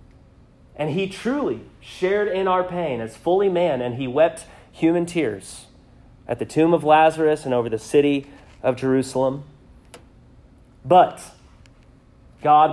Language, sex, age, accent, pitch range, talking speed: English, male, 30-49, American, 125-175 Hz, 130 wpm